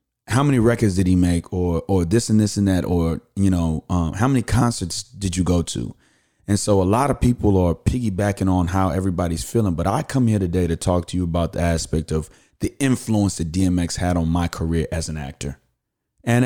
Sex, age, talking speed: male, 30-49, 220 wpm